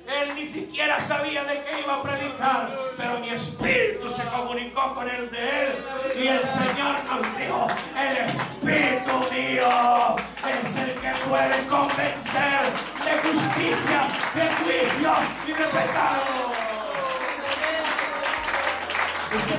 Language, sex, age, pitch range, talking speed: Spanish, male, 40-59, 245-310 Hz, 120 wpm